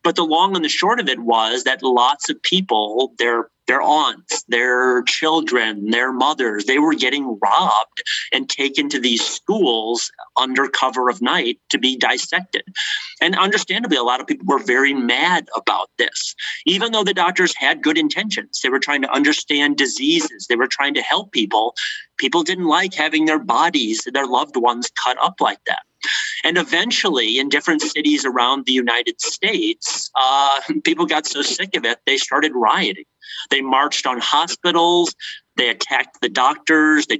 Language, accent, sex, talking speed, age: English, American, male, 175 wpm, 30-49